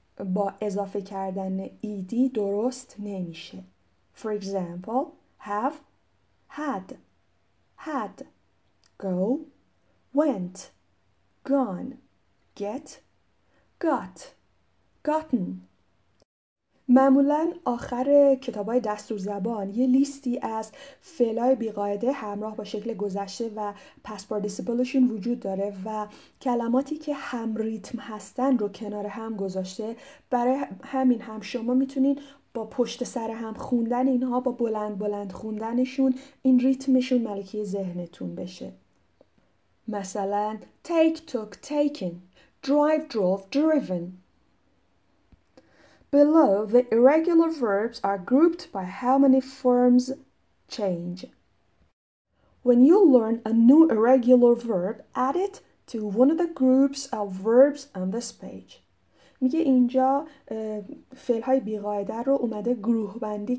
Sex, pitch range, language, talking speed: female, 205-265 Hz, Persian, 105 wpm